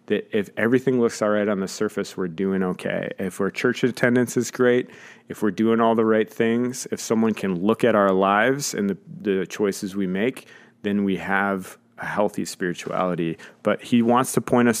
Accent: American